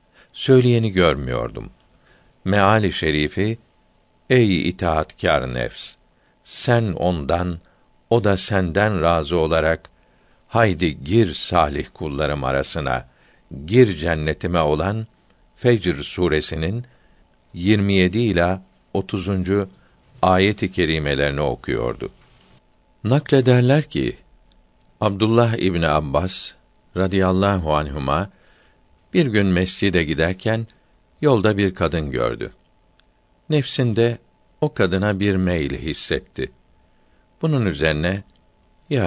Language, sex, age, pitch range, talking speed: Turkish, male, 60-79, 80-110 Hz, 85 wpm